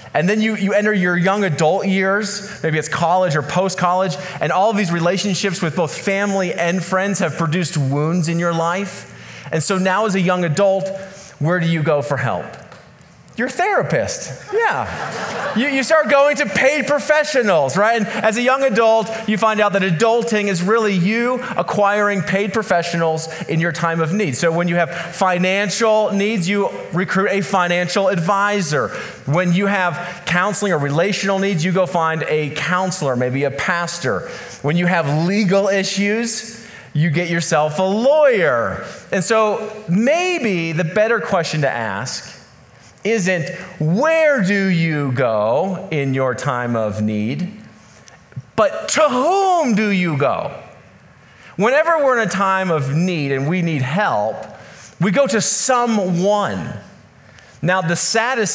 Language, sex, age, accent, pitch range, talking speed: English, male, 30-49, American, 155-205 Hz, 155 wpm